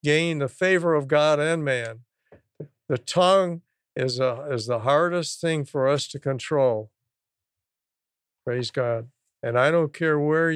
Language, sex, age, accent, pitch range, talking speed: English, male, 60-79, American, 130-150 Hz, 140 wpm